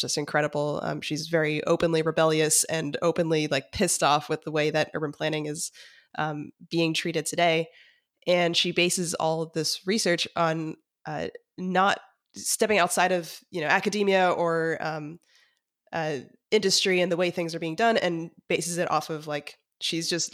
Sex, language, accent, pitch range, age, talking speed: female, English, American, 155-175 Hz, 20-39, 170 wpm